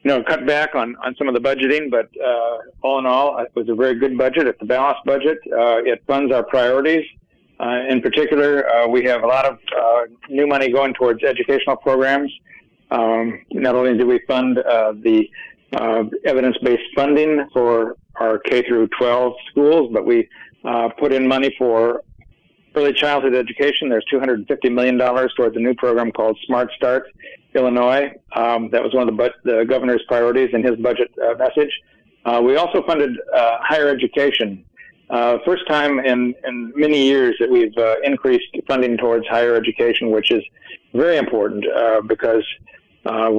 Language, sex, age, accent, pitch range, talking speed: English, male, 50-69, American, 115-140 Hz, 175 wpm